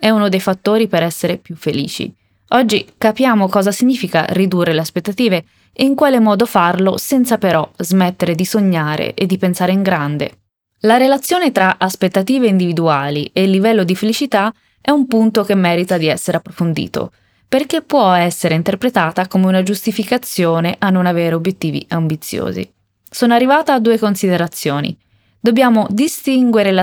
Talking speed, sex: 150 wpm, female